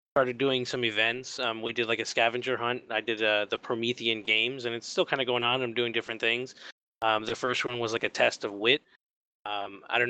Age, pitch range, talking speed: 20-39, 110-125 Hz, 245 wpm